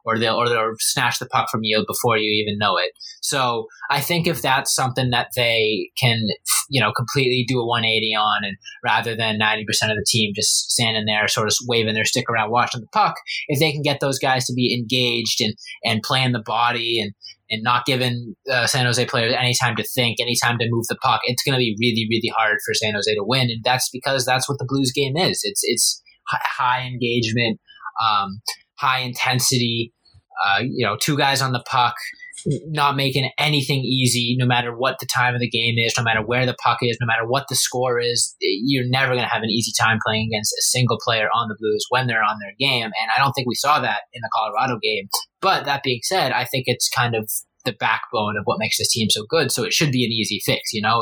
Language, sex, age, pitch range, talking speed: English, male, 20-39, 110-130 Hz, 240 wpm